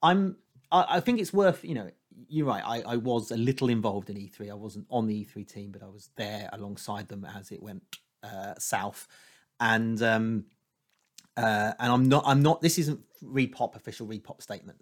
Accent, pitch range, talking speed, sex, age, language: British, 110-150 Hz, 195 wpm, male, 30-49, English